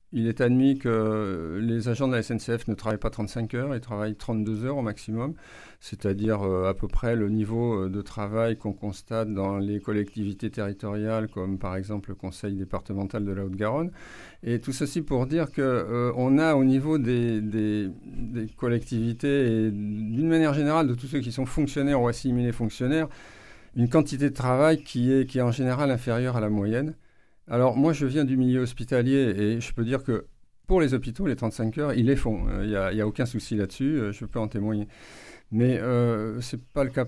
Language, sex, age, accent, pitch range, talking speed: French, male, 50-69, French, 110-135 Hz, 205 wpm